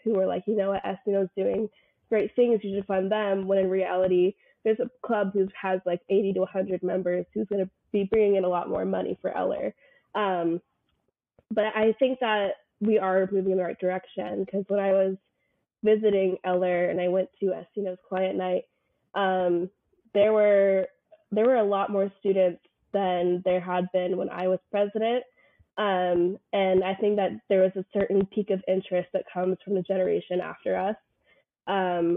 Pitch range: 185-205 Hz